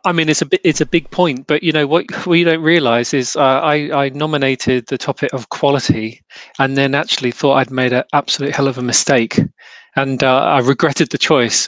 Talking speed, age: 220 wpm, 30-49